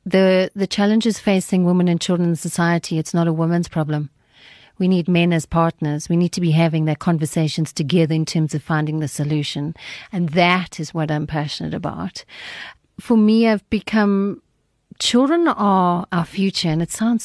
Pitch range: 160-195 Hz